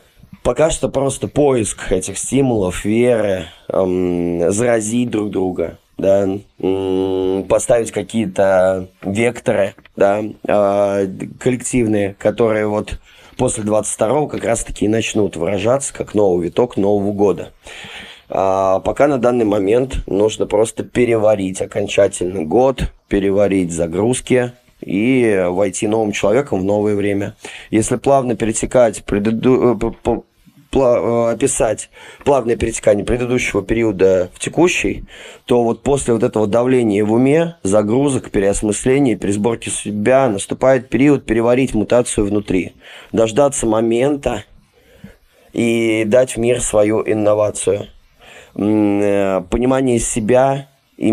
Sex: male